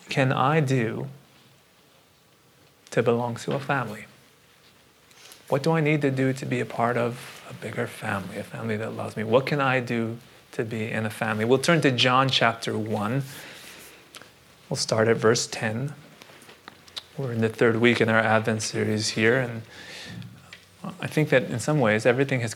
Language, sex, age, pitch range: English, male, 30-49, 115-155 Hz